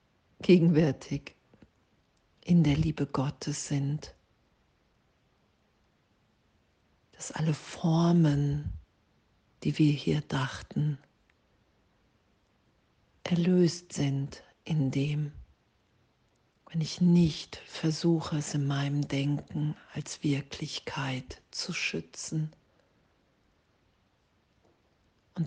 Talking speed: 70 wpm